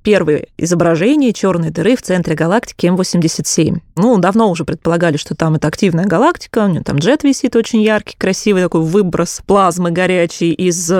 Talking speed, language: 165 wpm, Russian